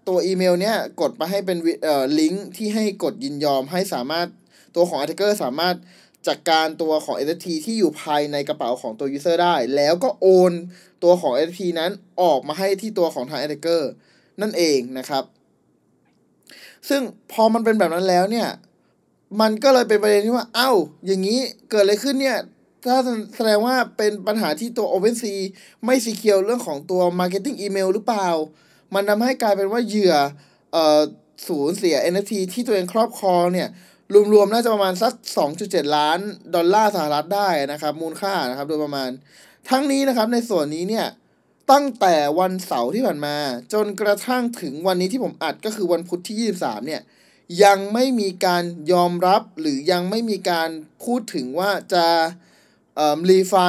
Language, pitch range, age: Thai, 170-220 Hz, 20-39